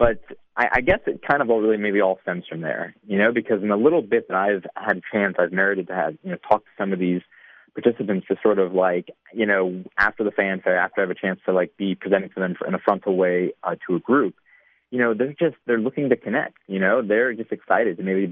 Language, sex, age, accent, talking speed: English, male, 30-49, American, 260 wpm